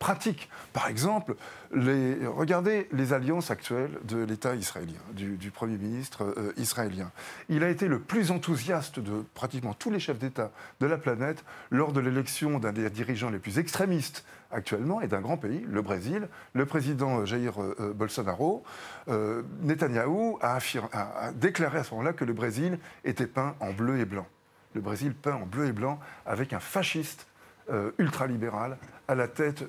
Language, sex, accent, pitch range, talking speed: French, male, French, 120-160 Hz, 170 wpm